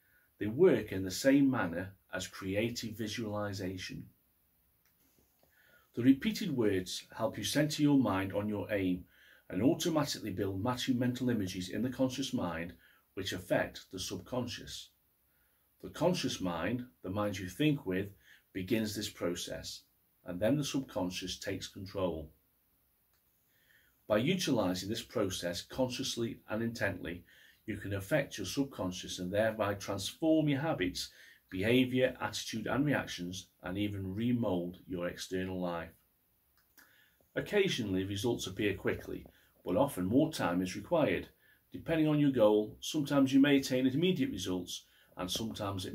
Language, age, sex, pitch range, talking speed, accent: English, 40-59, male, 95-125 Hz, 130 wpm, British